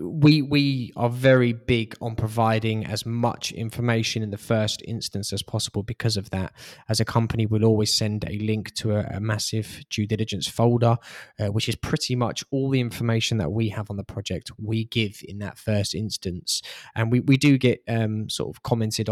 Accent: British